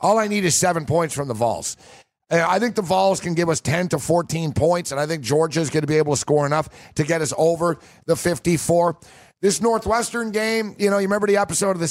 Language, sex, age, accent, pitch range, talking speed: English, male, 50-69, American, 145-185 Hz, 245 wpm